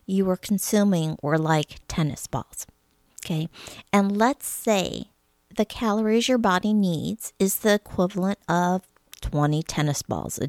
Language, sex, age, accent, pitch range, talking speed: English, female, 50-69, American, 160-225 Hz, 135 wpm